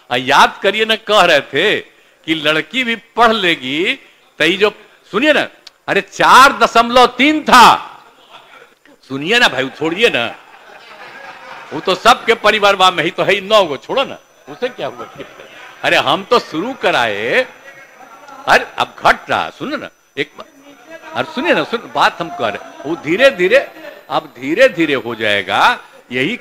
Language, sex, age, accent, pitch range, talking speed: Hindi, male, 60-79, native, 205-305 Hz, 155 wpm